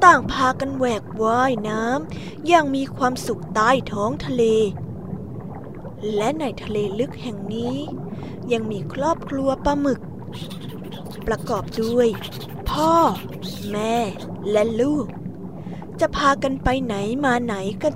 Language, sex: Thai, female